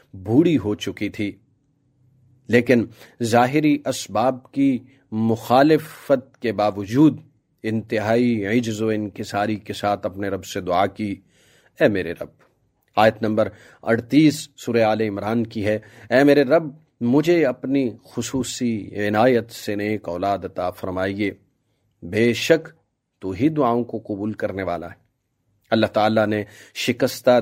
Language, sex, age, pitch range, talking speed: English, male, 40-59, 105-125 Hz, 125 wpm